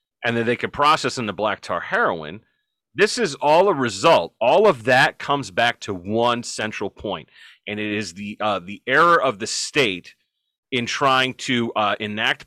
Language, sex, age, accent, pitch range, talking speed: English, male, 30-49, American, 110-145 Hz, 190 wpm